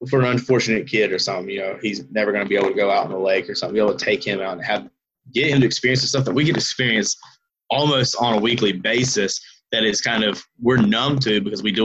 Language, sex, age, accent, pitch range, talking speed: English, male, 20-39, American, 95-125 Hz, 275 wpm